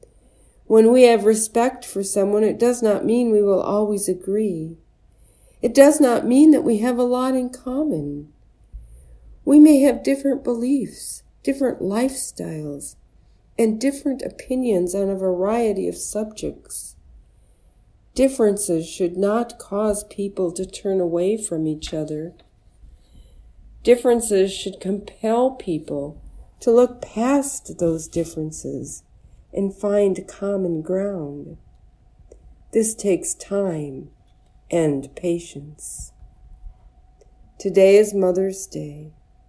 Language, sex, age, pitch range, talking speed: English, female, 50-69, 175-235 Hz, 110 wpm